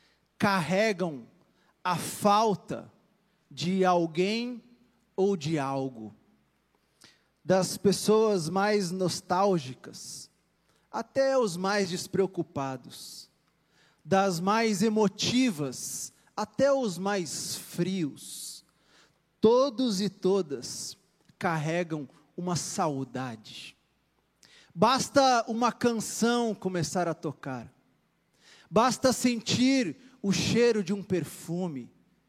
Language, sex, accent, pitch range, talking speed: Portuguese, male, Brazilian, 170-235 Hz, 80 wpm